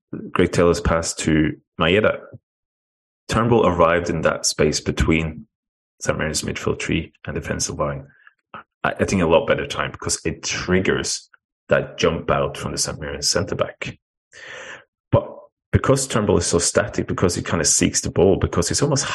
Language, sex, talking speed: English, male, 160 wpm